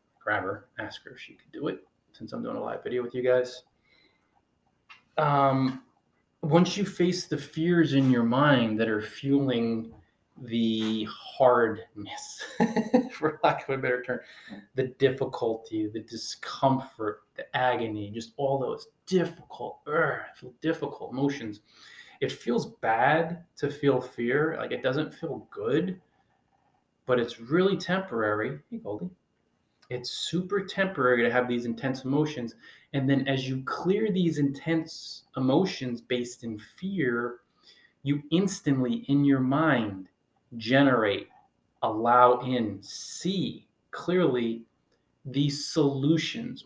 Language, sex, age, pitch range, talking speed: English, male, 20-39, 120-155 Hz, 125 wpm